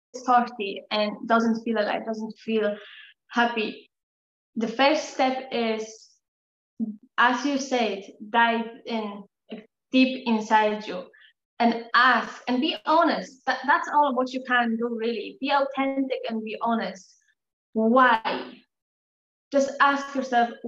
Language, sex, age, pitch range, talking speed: English, female, 20-39, 230-270 Hz, 120 wpm